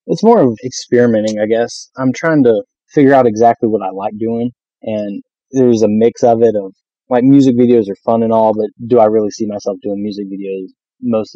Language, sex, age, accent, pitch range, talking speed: English, male, 20-39, American, 100-120 Hz, 210 wpm